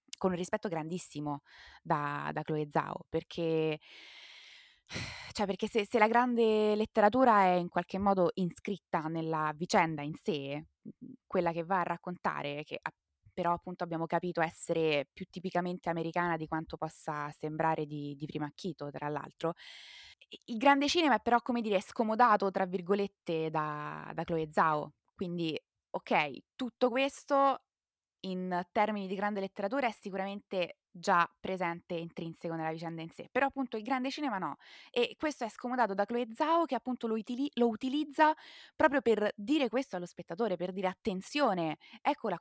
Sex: female